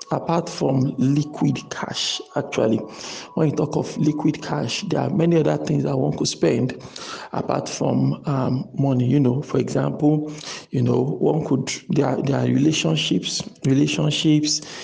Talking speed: 150 wpm